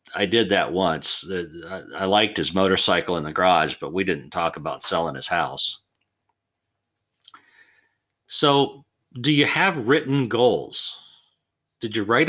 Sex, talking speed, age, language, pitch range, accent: male, 135 wpm, 50-69, English, 100-130 Hz, American